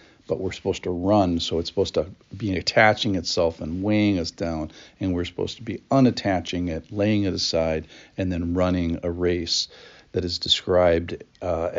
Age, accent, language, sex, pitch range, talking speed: 50-69, American, English, male, 85-100 Hz, 180 wpm